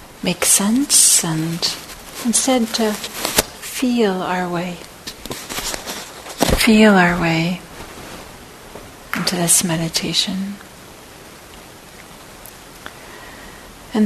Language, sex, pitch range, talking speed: English, female, 175-210 Hz, 65 wpm